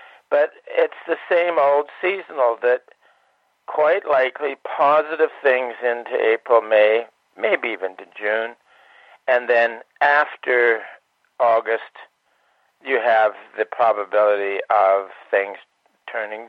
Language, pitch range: English, 110-135 Hz